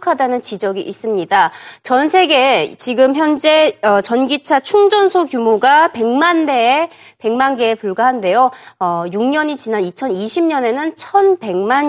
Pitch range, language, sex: 225-335 Hz, Korean, female